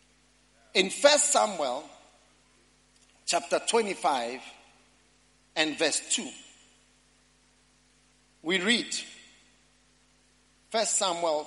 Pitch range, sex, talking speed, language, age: 155-235 Hz, male, 65 wpm, English, 50-69